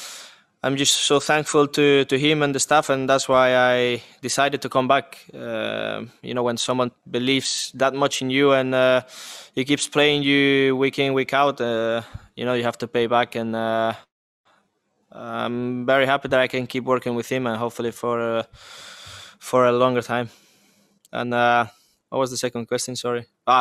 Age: 20-39